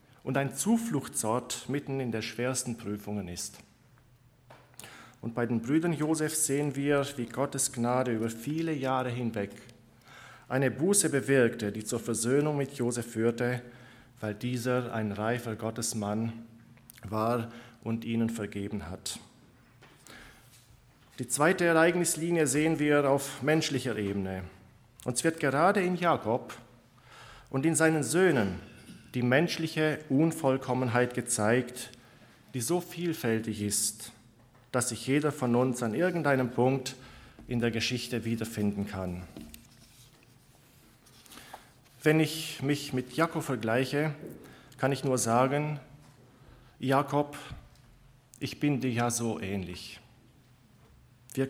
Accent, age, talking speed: German, 40-59, 115 wpm